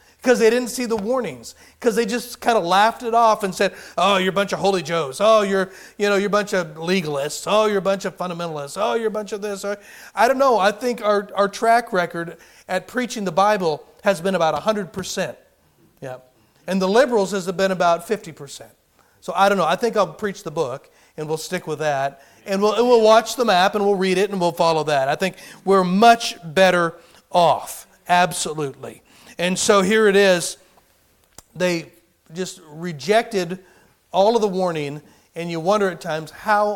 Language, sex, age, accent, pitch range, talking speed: English, male, 40-59, American, 155-205 Hz, 205 wpm